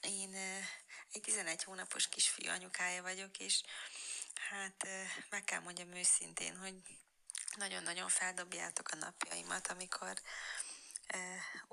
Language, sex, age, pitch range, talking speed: Hungarian, female, 20-39, 185-205 Hz, 100 wpm